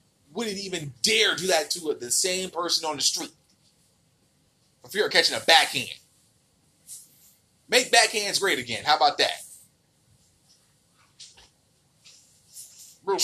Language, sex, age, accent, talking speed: English, male, 30-49, American, 120 wpm